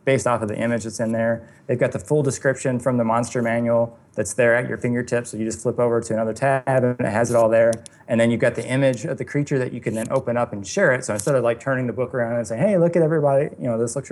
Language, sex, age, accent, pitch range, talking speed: English, male, 20-39, American, 115-135 Hz, 305 wpm